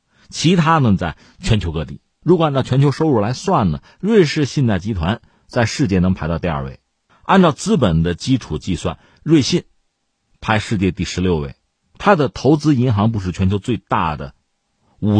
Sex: male